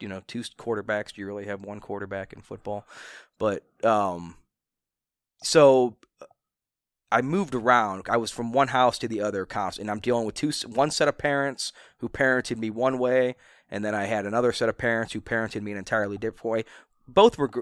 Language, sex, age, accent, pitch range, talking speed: English, male, 20-39, American, 95-115 Hz, 200 wpm